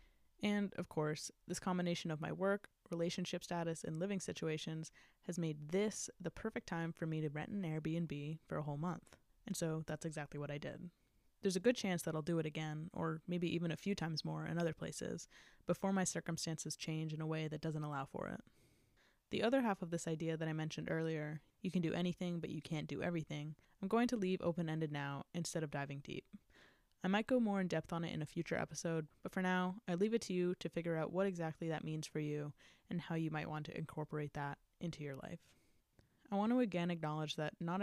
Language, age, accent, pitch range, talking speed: English, 20-39, American, 155-185 Hz, 225 wpm